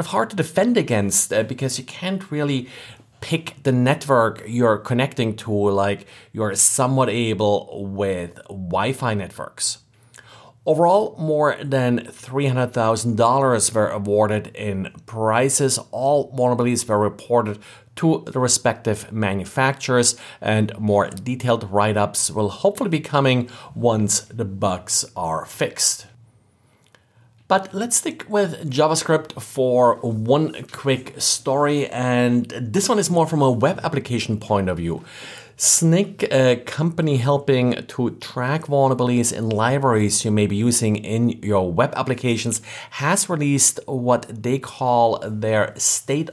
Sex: male